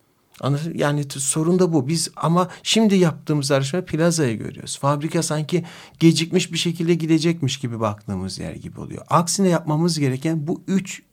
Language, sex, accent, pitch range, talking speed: Turkish, male, native, 130-165 Hz, 145 wpm